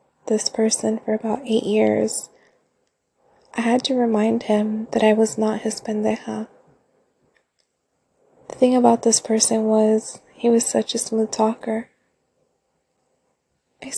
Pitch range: 210-230 Hz